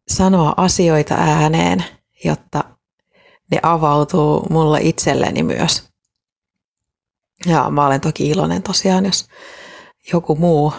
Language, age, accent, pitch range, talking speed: Finnish, 30-49, native, 150-180 Hz, 100 wpm